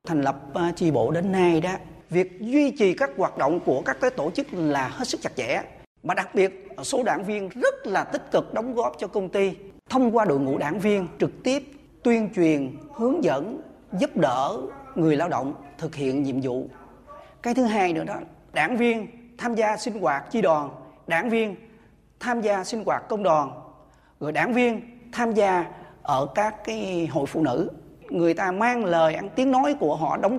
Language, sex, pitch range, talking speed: Vietnamese, male, 160-235 Hz, 200 wpm